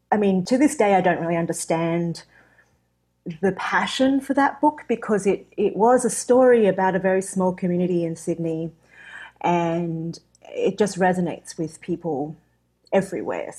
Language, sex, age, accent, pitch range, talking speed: English, female, 30-49, Australian, 170-195 Hz, 150 wpm